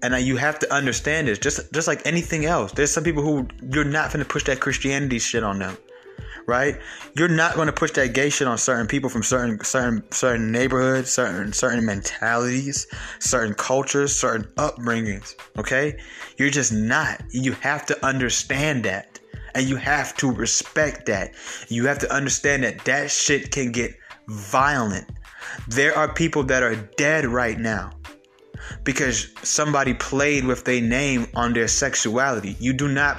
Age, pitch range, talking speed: 20-39, 115-140 Hz, 170 wpm